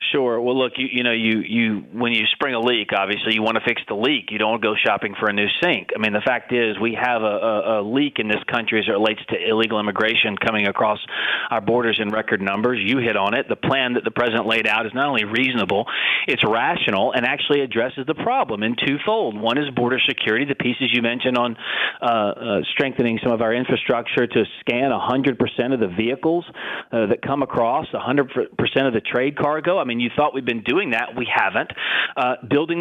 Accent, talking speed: American, 230 wpm